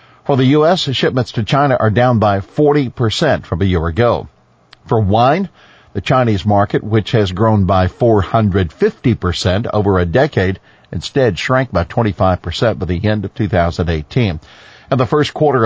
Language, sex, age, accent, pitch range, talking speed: English, male, 60-79, American, 95-115 Hz, 155 wpm